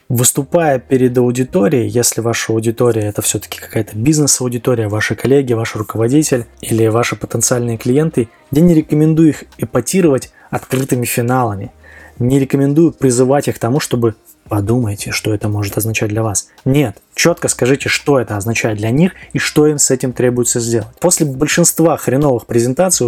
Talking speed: 150 wpm